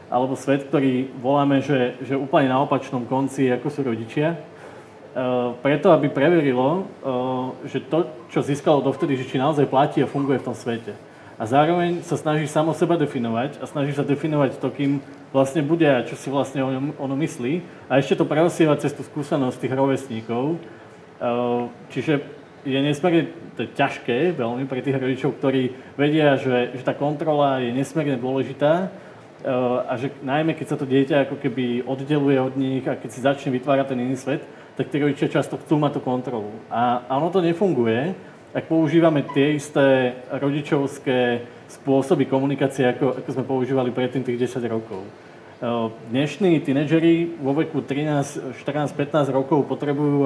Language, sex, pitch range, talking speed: Slovak, male, 130-150 Hz, 160 wpm